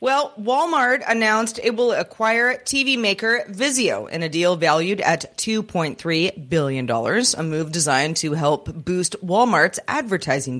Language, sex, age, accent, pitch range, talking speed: English, female, 30-49, American, 165-225 Hz, 135 wpm